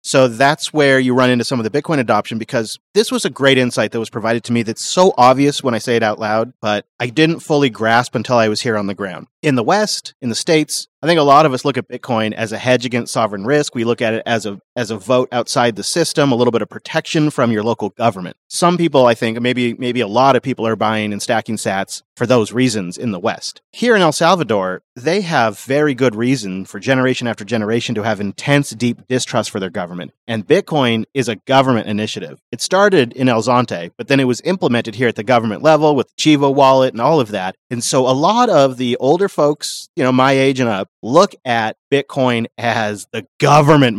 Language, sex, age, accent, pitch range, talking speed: English, male, 30-49, American, 115-145 Hz, 240 wpm